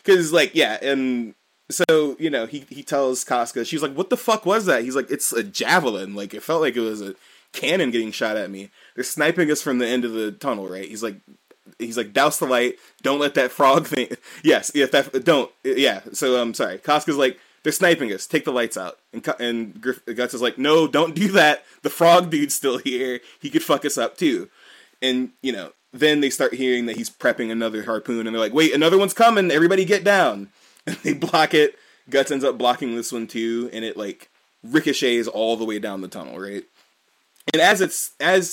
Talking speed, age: 220 wpm, 20-39